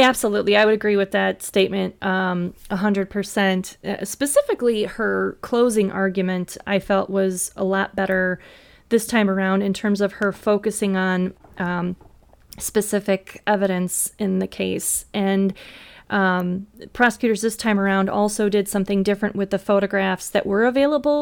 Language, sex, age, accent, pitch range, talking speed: English, female, 20-39, American, 190-210 Hz, 145 wpm